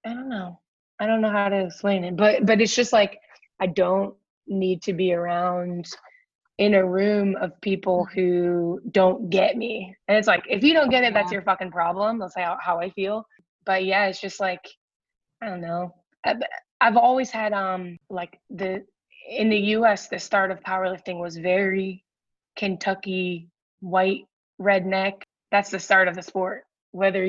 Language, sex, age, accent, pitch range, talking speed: English, female, 20-39, American, 180-210 Hz, 180 wpm